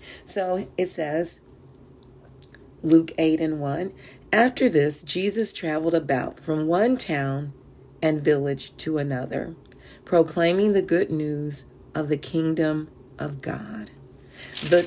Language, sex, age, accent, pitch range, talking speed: English, female, 40-59, American, 145-185 Hz, 115 wpm